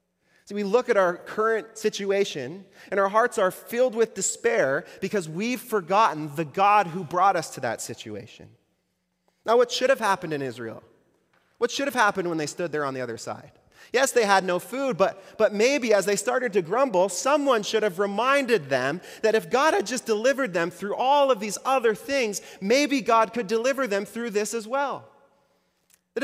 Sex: male